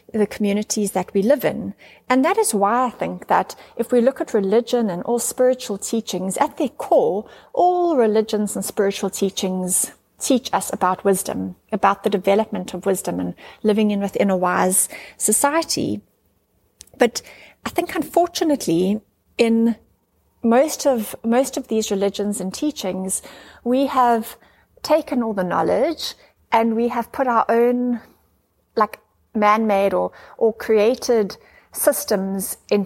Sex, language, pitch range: female, English, 200-250 Hz